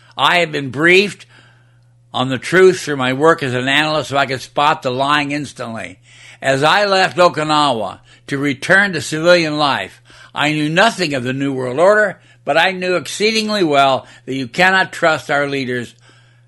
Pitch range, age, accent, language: 125-155 Hz, 60-79, American, English